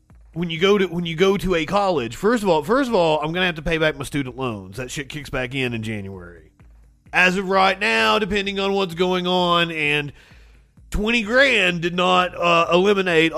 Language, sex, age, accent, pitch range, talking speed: English, male, 30-49, American, 130-180 Hz, 215 wpm